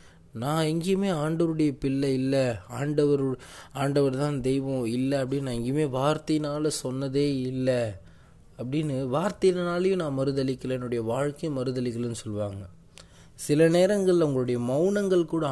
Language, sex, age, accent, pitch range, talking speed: Tamil, male, 20-39, native, 115-155 Hz, 110 wpm